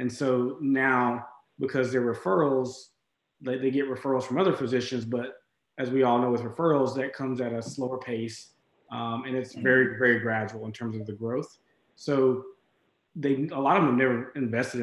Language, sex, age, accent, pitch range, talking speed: English, male, 20-39, American, 120-140 Hz, 180 wpm